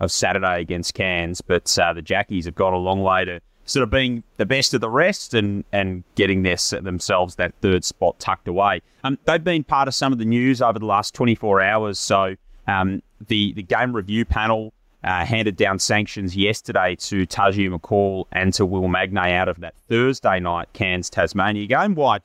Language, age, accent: English, 30-49, Australian